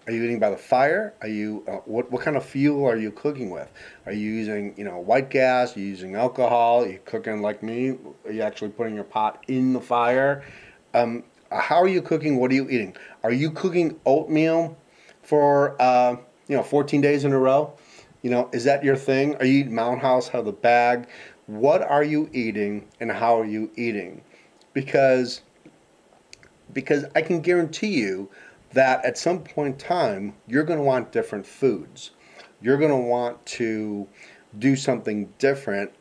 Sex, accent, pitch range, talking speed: male, American, 110-140 Hz, 190 wpm